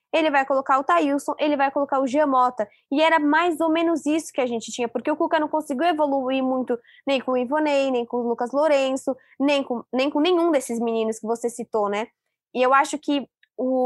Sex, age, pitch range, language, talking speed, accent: female, 20-39, 245-290 Hz, Portuguese, 225 wpm, Brazilian